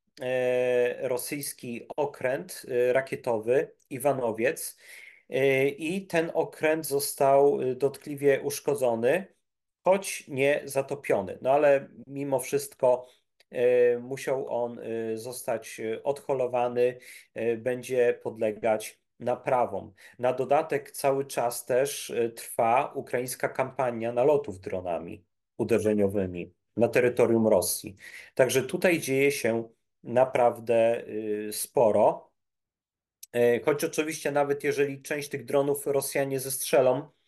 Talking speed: 85 wpm